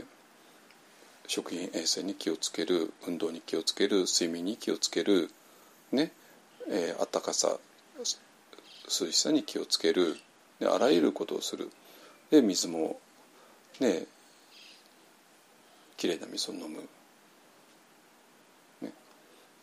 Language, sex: Japanese, male